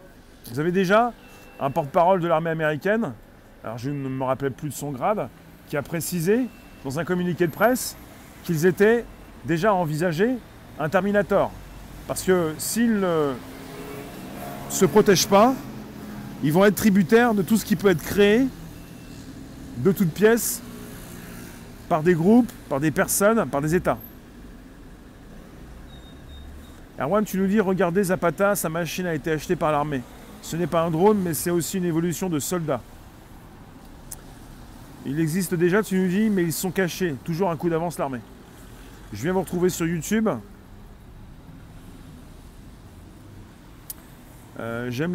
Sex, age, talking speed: male, 30-49, 145 wpm